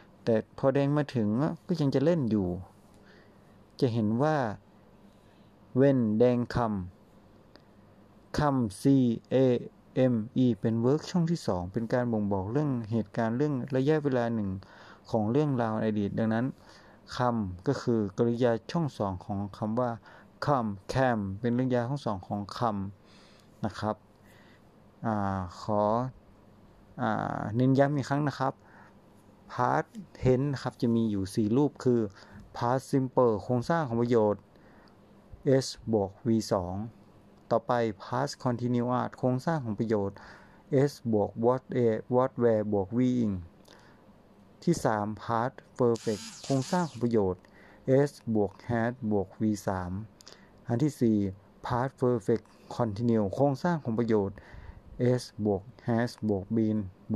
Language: Thai